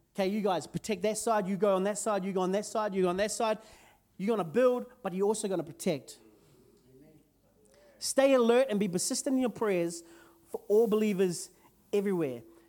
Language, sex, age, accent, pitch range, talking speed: English, male, 30-49, Australian, 195-265 Hz, 205 wpm